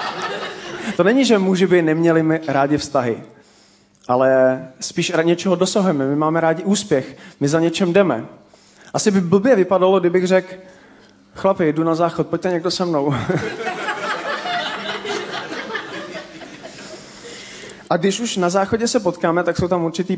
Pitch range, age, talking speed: 165-200 Hz, 30-49, 140 wpm